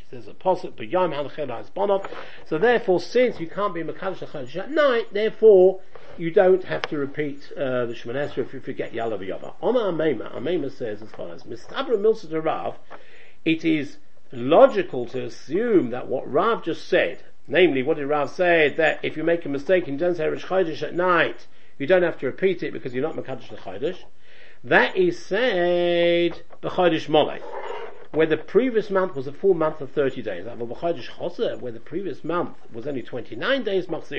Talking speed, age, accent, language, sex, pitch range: 170 wpm, 50-69, British, English, male, 150-205 Hz